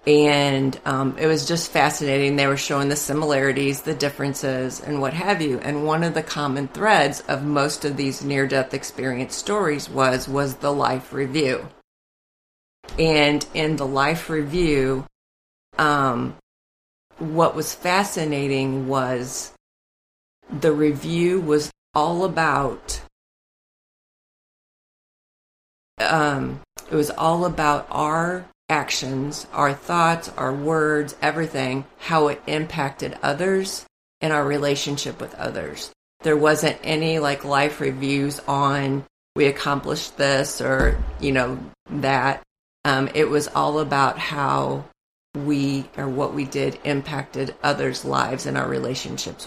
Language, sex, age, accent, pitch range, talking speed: English, female, 40-59, American, 135-155 Hz, 125 wpm